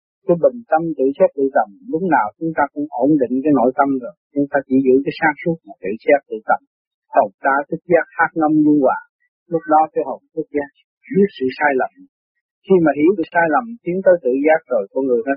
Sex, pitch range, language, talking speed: male, 135-185 Hz, Vietnamese, 240 wpm